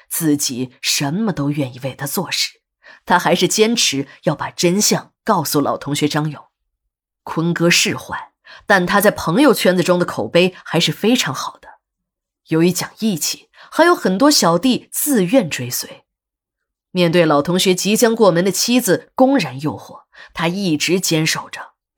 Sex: female